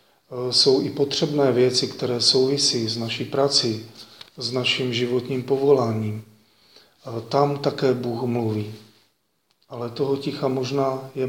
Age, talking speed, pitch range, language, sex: 40-59, 115 wpm, 120-140 Hz, Slovak, male